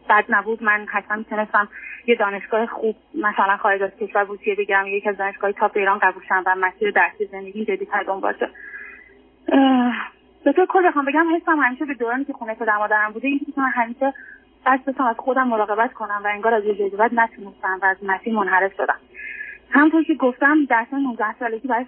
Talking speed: 175 wpm